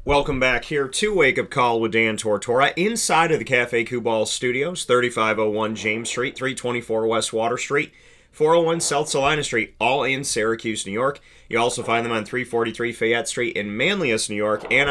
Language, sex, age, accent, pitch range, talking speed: English, male, 30-49, American, 110-130 Hz, 180 wpm